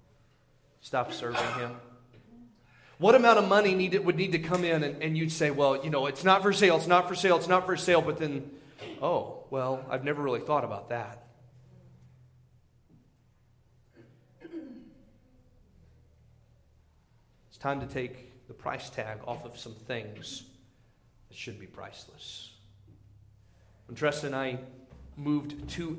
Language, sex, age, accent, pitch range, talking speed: English, male, 30-49, American, 125-170 Hz, 145 wpm